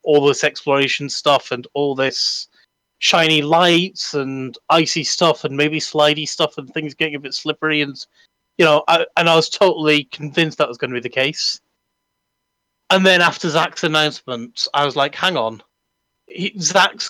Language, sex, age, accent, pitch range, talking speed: English, male, 30-49, British, 125-170 Hz, 170 wpm